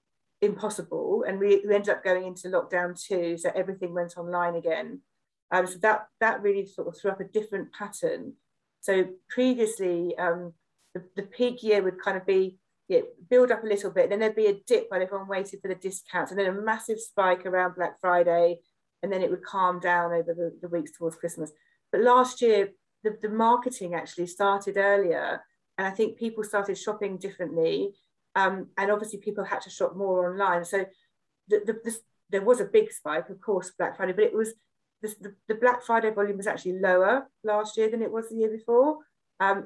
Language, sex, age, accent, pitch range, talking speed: English, female, 40-59, British, 180-220 Hz, 205 wpm